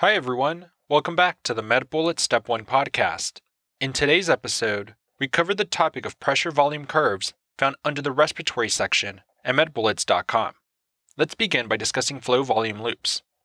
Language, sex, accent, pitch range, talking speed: English, male, American, 120-165 Hz, 155 wpm